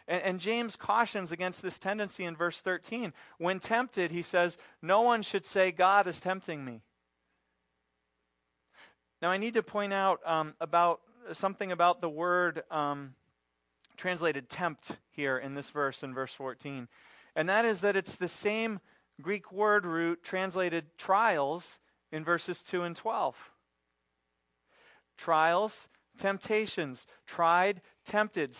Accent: American